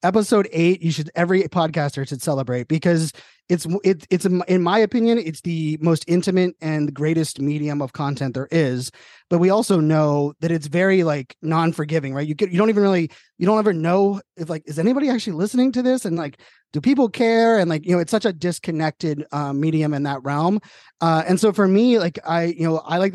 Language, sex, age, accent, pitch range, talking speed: English, male, 20-39, American, 150-175 Hz, 220 wpm